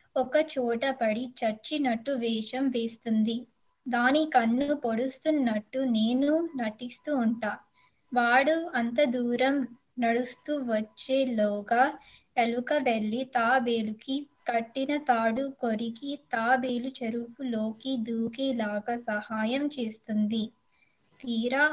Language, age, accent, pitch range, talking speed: Telugu, 20-39, native, 230-270 Hz, 80 wpm